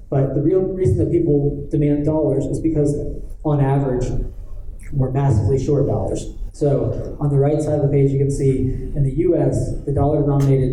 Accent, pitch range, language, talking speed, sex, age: American, 115-140 Hz, English, 180 wpm, male, 30-49